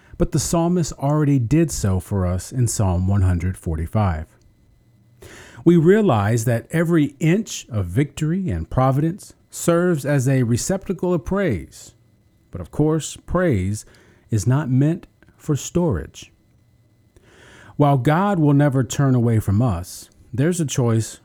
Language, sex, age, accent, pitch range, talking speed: English, male, 40-59, American, 105-140 Hz, 130 wpm